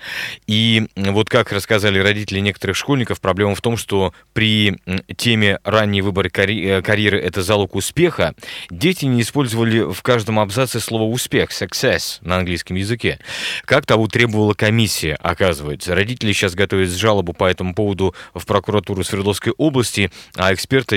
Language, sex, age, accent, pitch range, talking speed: Russian, male, 30-49, native, 95-120 Hz, 145 wpm